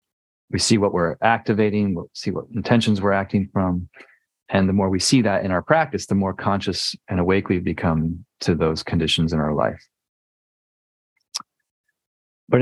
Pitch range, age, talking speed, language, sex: 85-105 Hz, 40-59, 165 wpm, English, male